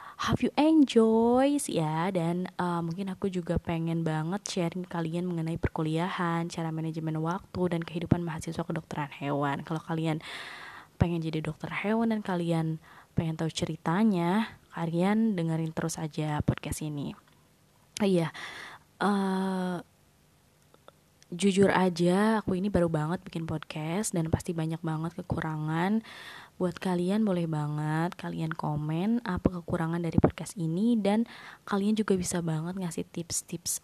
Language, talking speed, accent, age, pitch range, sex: Indonesian, 135 wpm, native, 20-39, 160-195 Hz, female